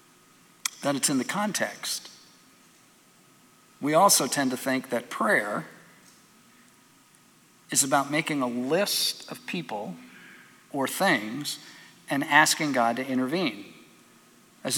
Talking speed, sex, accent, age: 110 wpm, male, American, 50-69